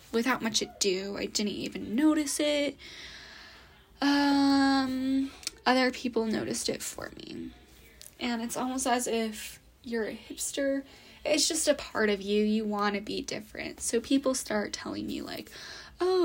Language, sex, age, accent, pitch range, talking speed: English, female, 10-29, American, 220-290 Hz, 150 wpm